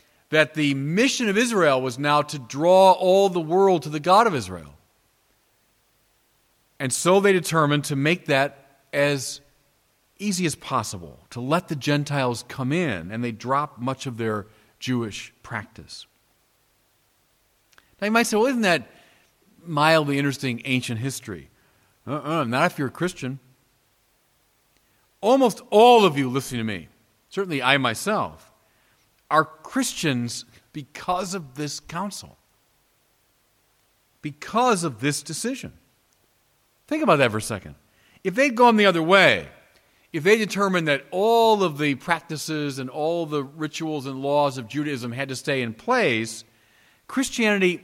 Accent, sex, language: American, male, English